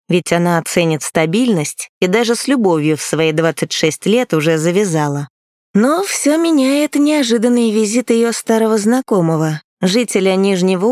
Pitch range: 170-240 Hz